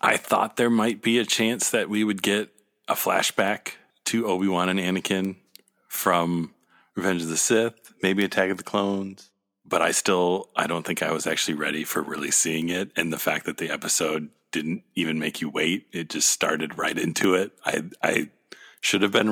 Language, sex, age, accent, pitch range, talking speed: English, male, 40-59, American, 80-105 Hz, 195 wpm